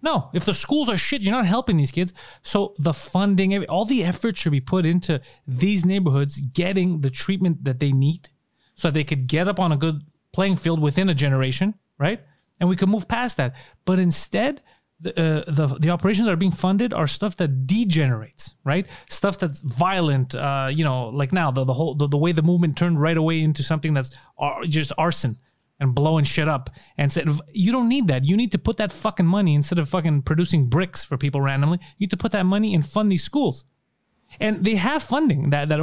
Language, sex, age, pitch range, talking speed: English, male, 30-49, 145-185 Hz, 220 wpm